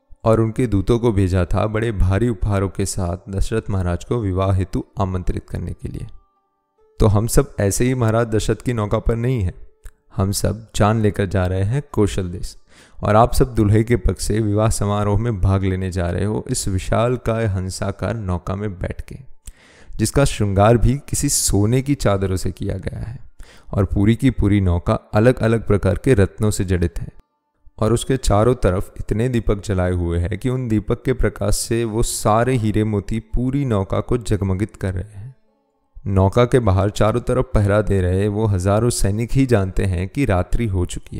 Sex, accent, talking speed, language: male, native, 190 wpm, Hindi